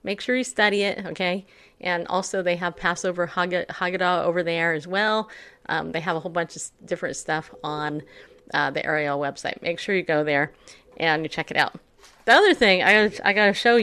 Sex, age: female, 40-59